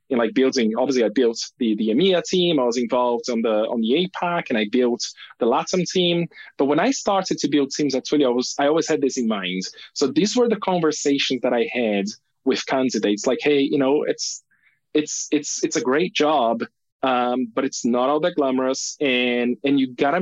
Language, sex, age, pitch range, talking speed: English, male, 20-39, 125-160 Hz, 210 wpm